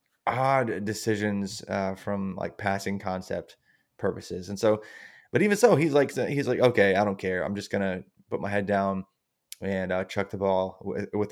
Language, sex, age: English, male, 20-39